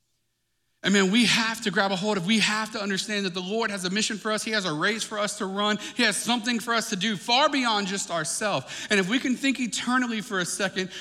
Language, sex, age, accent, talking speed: English, male, 40-59, American, 275 wpm